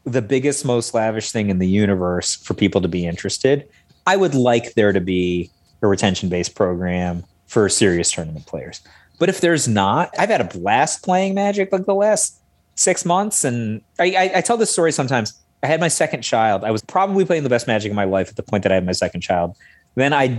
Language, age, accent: English, 30-49, American